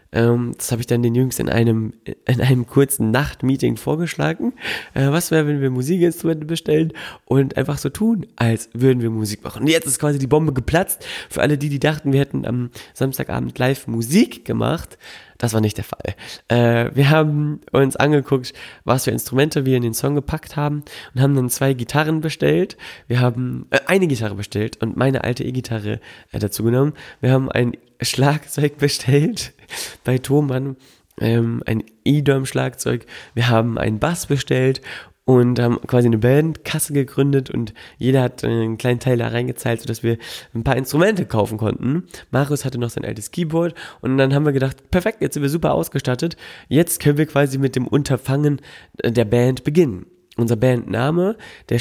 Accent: German